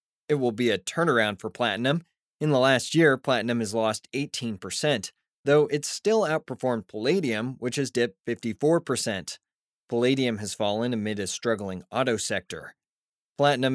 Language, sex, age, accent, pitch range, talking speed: English, male, 20-39, American, 110-145 Hz, 145 wpm